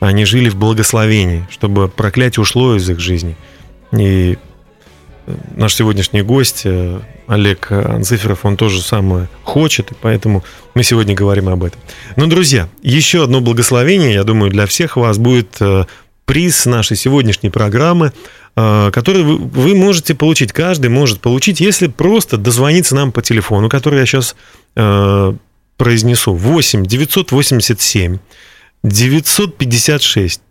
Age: 30-49